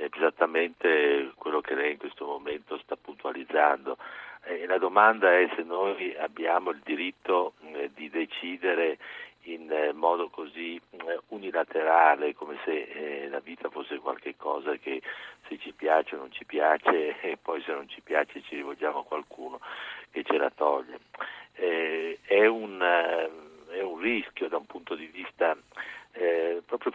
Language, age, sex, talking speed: Italian, 50-69, male, 160 wpm